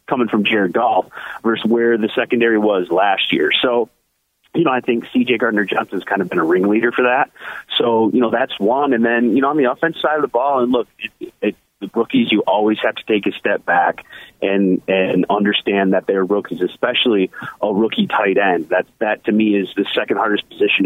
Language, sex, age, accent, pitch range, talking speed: English, male, 30-49, American, 100-125 Hz, 215 wpm